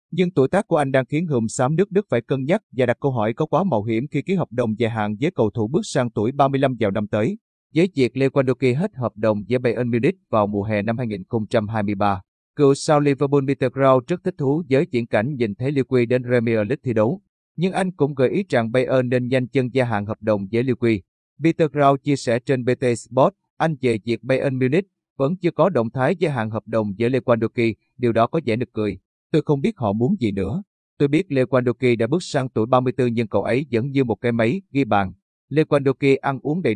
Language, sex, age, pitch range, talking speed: Vietnamese, male, 30-49, 115-145 Hz, 240 wpm